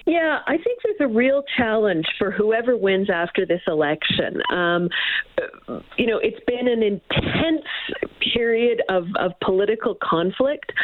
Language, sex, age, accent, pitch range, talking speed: English, female, 40-59, American, 195-255 Hz, 140 wpm